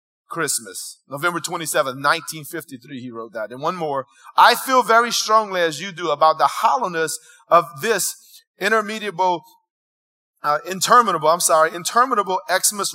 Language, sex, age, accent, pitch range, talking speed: English, male, 30-49, American, 165-215 Hz, 135 wpm